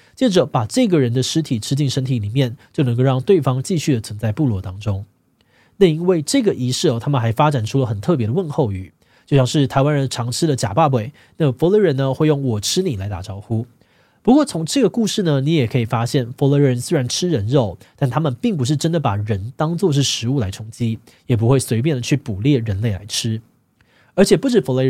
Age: 20-39